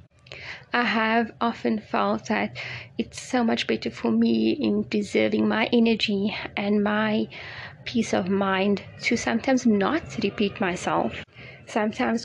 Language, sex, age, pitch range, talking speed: English, female, 20-39, 200-230 Hz, 125 wpm